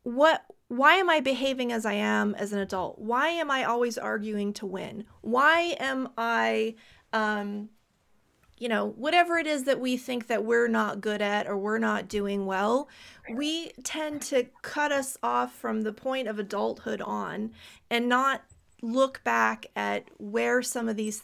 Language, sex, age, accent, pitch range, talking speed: English, female, 30-49, American, 210-255 Hz, 170 wpm